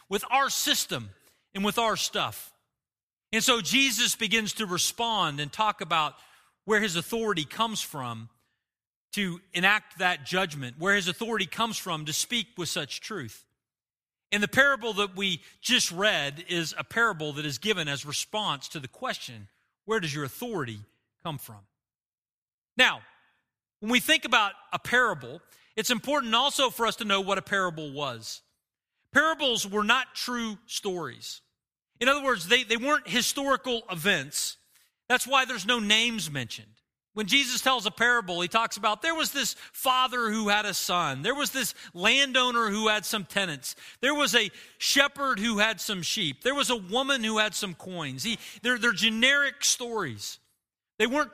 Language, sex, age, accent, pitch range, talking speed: English, male, 40-59, American, 170-245 Hz, 165 wpm